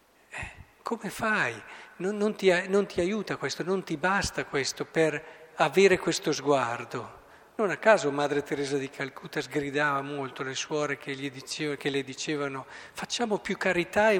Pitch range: 140-185 Hz